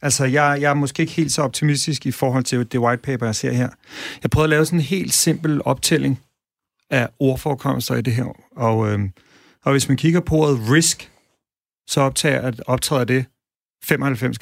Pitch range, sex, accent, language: 120-145 Hz, male, native, Danish